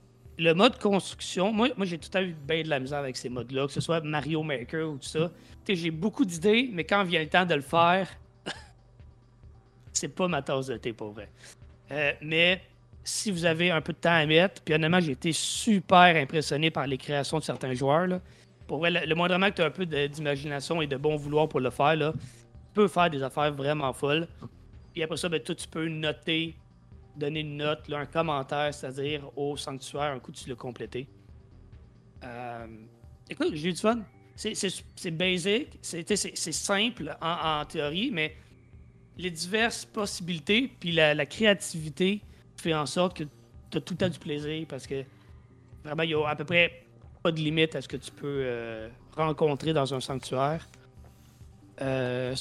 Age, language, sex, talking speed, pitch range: 30-49, French, male, 205 wpm, 135-175 Hz